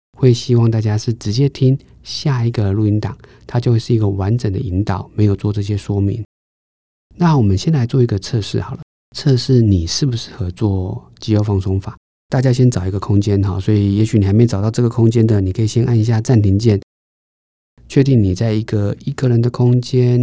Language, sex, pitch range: Chinese, male, 95-120 Hz